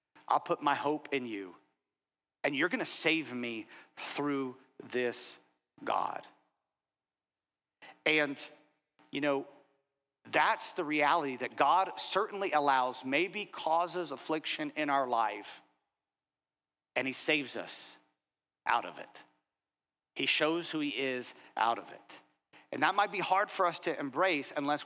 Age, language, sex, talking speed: 40-59, English, male, 135 wpm